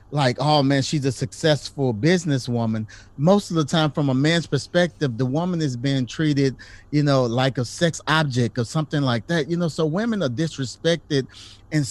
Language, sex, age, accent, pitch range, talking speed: English, male, 30-49, American, 120-160 Hz, 185 wpm